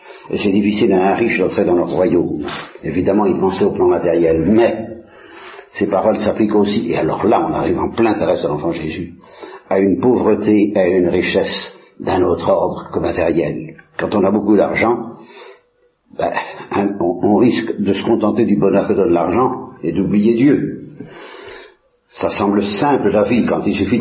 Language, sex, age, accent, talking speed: Italian, male, 60-79, French, 185 wpm